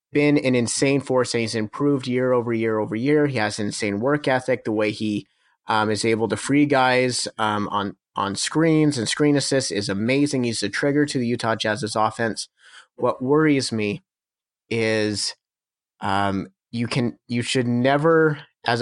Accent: American